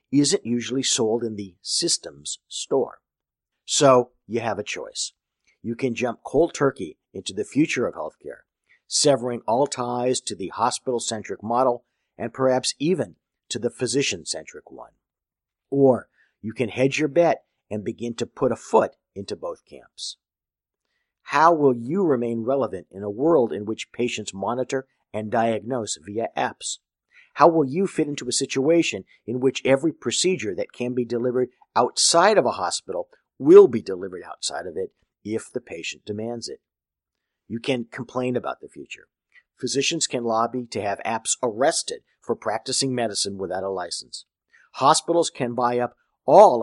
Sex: male